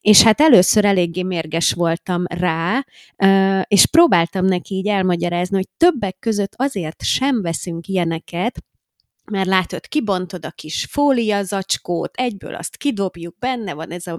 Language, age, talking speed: Hungarian, 20-39, 140 wpm